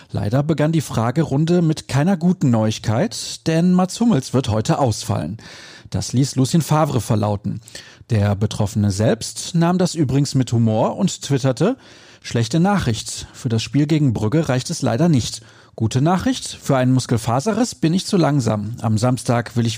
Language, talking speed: German, 160 wpm